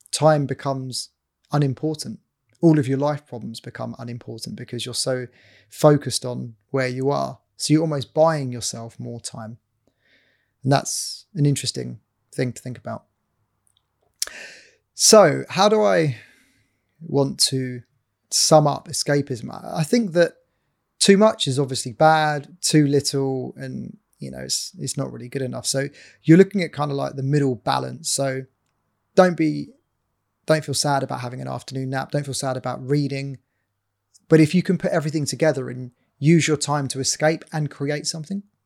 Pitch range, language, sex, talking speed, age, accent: 115-150 Hz, English, male, 160 wpm, 20-39, British